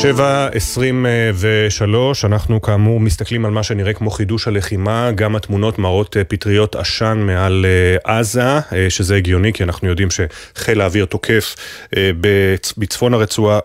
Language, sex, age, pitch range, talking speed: Hebrew, male, 30-49, 95-115 Hz, 125 wpm